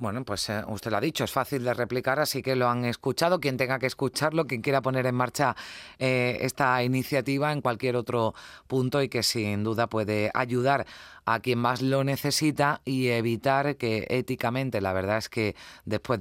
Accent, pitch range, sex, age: Spanish, 110-130 Hz, female, 30-49